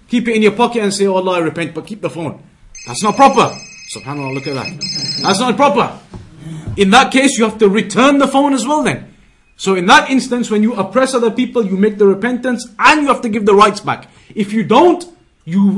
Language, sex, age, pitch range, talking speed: English, male, 30-49, 200-235 Hz, 235 wpm